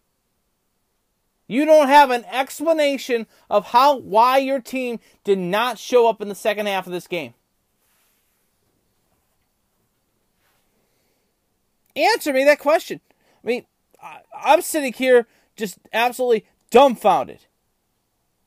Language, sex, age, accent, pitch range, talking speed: English, male, 30-49, American, 175-245 Hz, 105 wpm